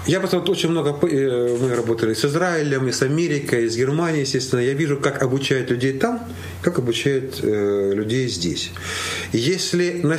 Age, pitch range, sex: 40-59, 110-150 Hz, male